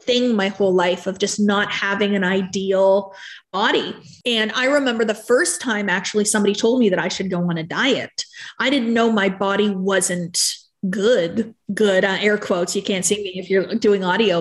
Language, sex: English, female